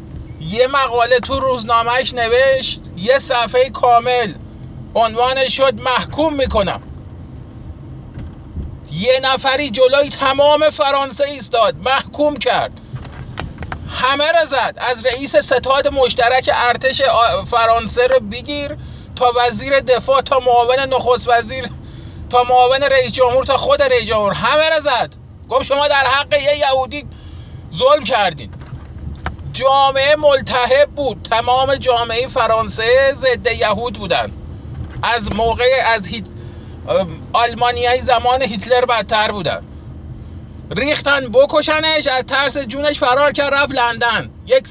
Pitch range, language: 240-275 Hz, Persian